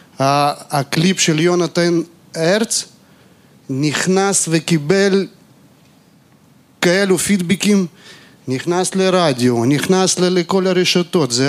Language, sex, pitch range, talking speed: Hebrew, male, 145-190 Hz, 80 wpm